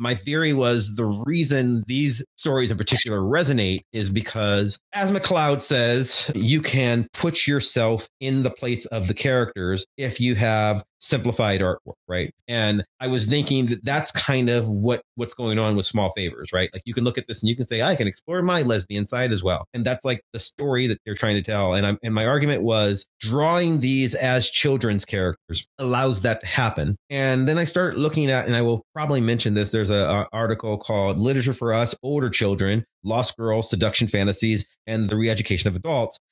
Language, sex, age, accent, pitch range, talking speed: English, male, 30-49, American, 105-135 Hz, 200 wpm